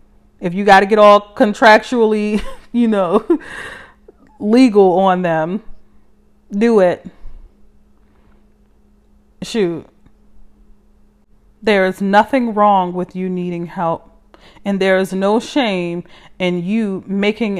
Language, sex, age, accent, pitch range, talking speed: English, female, 30-49, American, 175-210 Hz, 105 wpm